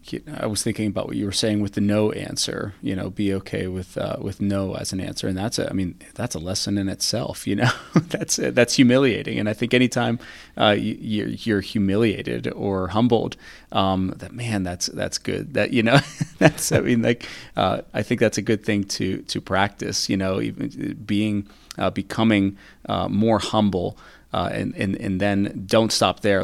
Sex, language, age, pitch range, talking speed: male, English, 30-49, 95-115 Hz, 200 wpm